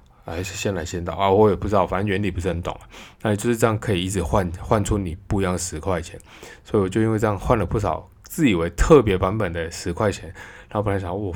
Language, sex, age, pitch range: Chinese, male, 20-39, 90-115 Hz